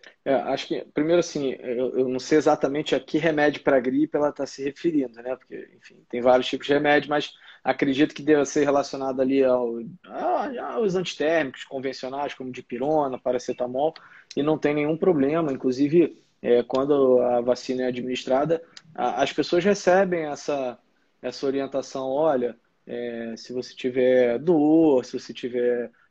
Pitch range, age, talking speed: 125-155 Hz, 20-39, 160 wpm